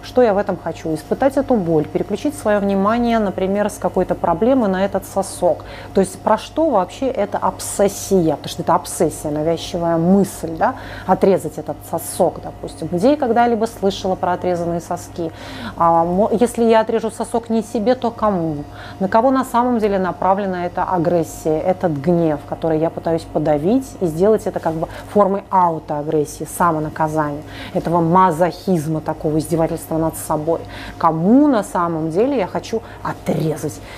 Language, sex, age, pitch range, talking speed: Russian, female, 30-49, 155-200 Hz, 155 wpm